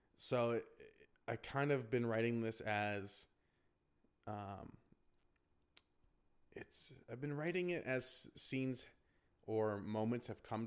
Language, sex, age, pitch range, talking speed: English, male, 20-39, 100-120 Hz, 110 wpm